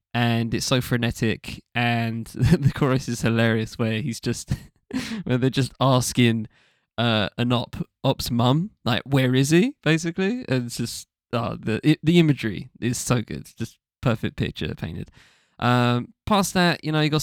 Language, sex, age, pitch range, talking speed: English, male, 20-39, 120-140 Hz, 170 wpm